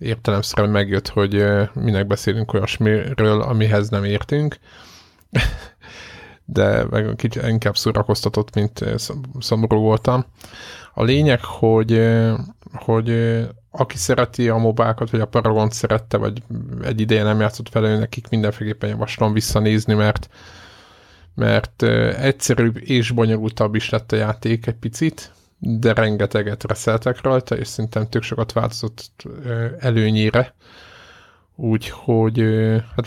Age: 20-39